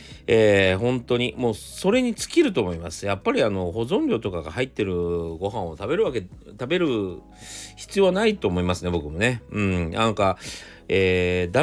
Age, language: 40-59, Japanese